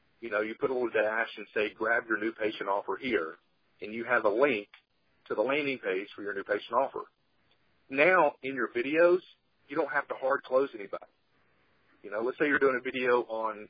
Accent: American